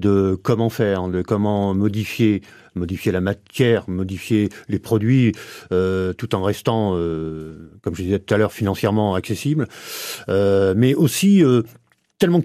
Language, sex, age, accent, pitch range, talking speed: French, male, 50-69, French, 100-130 Hz, 145 wpm